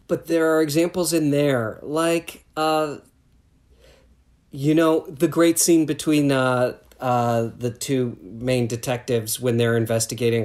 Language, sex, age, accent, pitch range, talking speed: English, male, 40-59, American, 115-145 Hz, 130 wpm